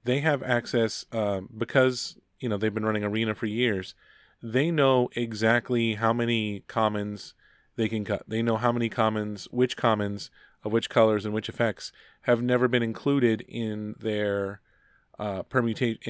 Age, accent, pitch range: 30-49, American, 110-130 Hz